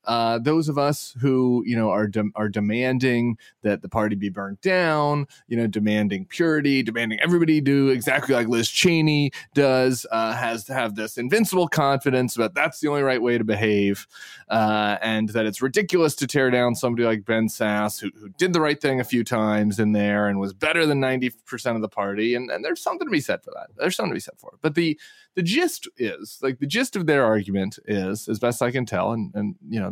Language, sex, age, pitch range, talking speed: English, male, 20-39, 110-140 Hz, 225 wpm